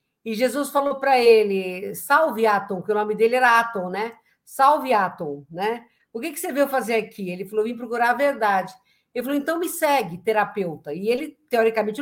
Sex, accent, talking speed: female, Brazilian, 190 wpm